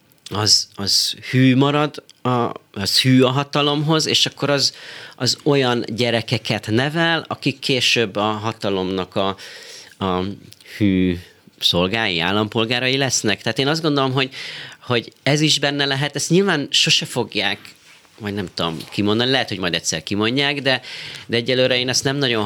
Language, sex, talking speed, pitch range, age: Hungarian, male, 145 wpm, 105-135 Hz, 30-49